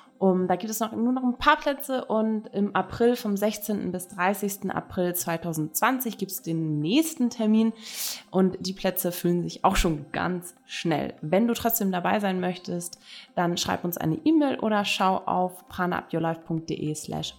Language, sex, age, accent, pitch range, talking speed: German, female, 20-39, German, 180-225 Hz, 160 wpm